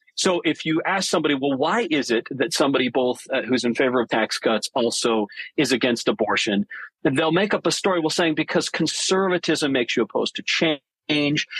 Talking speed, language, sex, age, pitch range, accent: 190 wpm, English, male, 40-59, 125-165 Hz, American